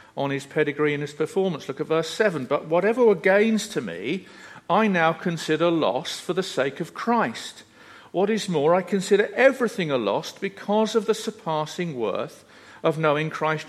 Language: English